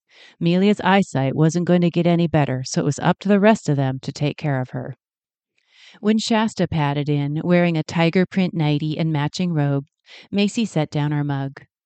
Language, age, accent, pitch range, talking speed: English, 40-59, American, 145-190 Hz, 195 wpm